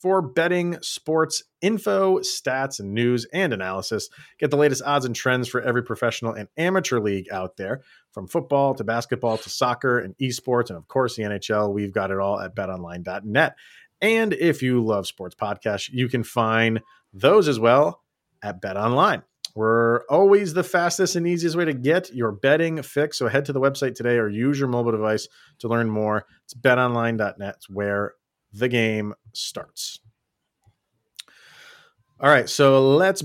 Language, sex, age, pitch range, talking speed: English, male, 30-49, 105-140 Hz, 170 wpm